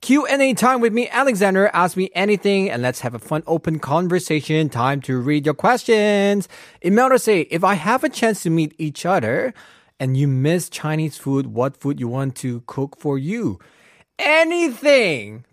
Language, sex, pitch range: Korean, male, 125-185 Hz